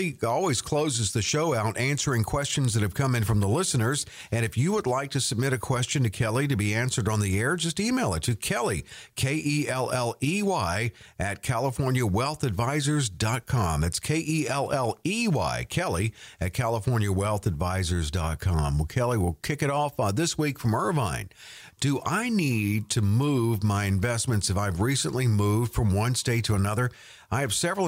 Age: 50-69